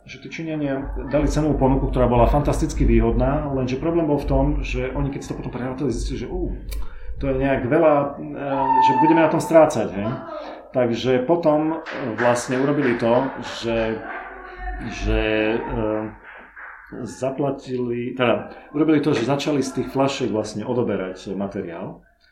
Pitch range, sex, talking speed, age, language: 115-145 Hz, male, 145 wpm, 40-59, Slovak